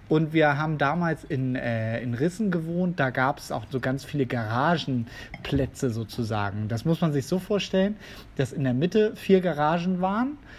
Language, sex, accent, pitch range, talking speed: German, male, German, 130-185 Hz, 170 wpm